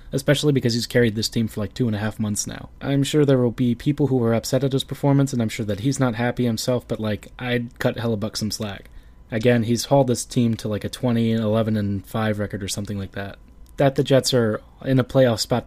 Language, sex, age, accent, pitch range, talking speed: English, male, 20-39, American, 105-125 Hz, 240 wpm